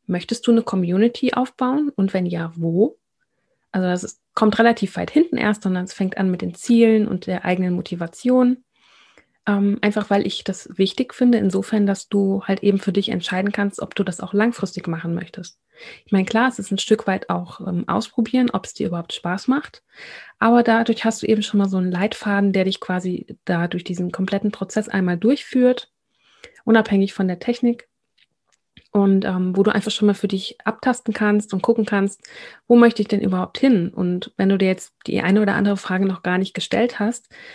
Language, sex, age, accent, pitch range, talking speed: German, female, 30-49, German, 185-225 Hz, 200 wpm